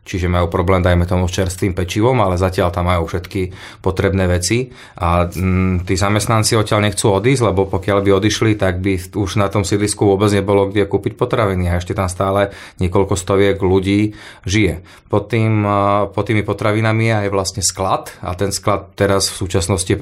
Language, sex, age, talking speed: Slovak, male, 30-49, 175 wpm